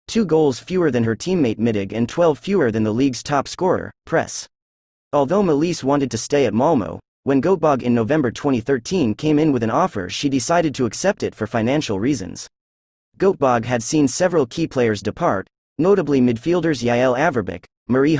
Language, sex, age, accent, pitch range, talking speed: English, male, 30-49, American, 110-155 Hz, 175 wpm